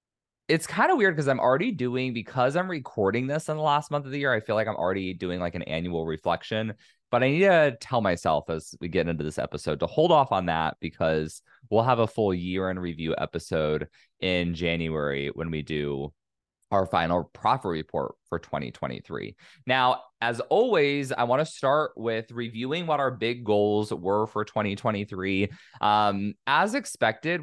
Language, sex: English, male